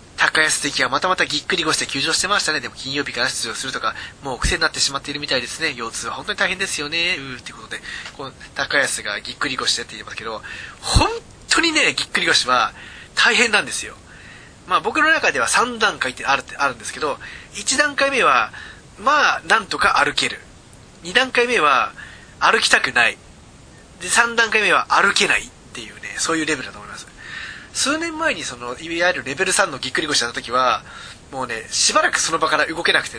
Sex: male